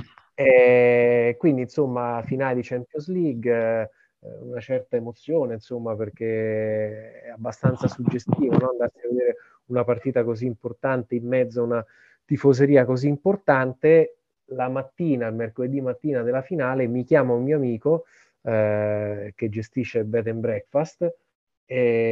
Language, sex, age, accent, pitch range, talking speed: Italian, male, 30-49, native, 120-145 Hz, 135 wpm